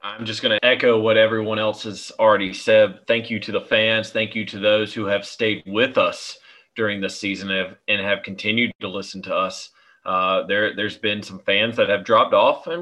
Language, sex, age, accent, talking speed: English, male, 30-49, American, 225 wpm